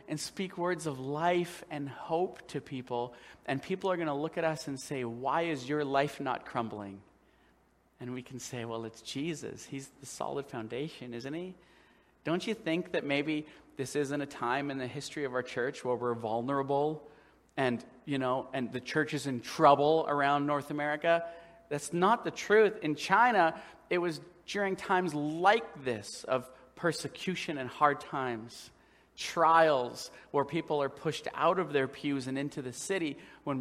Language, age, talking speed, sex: English, 40-59, 175 wpm, male